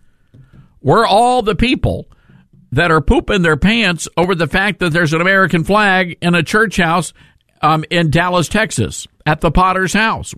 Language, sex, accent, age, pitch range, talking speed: English, male, American, 50-69, 120-175 Hz, 175 wpm